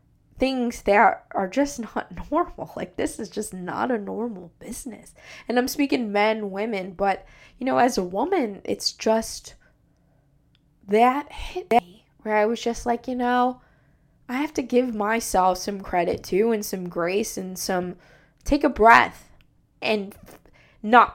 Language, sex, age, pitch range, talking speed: English, female, 20-39, 185-245 Hz, 155 wpm